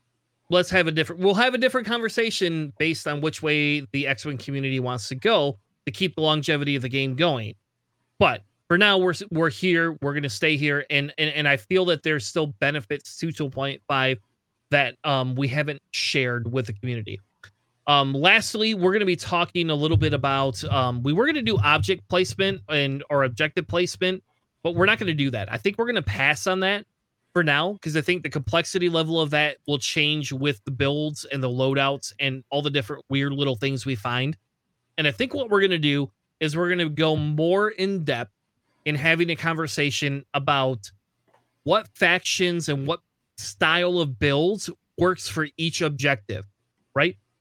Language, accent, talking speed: English, American, 190 wpm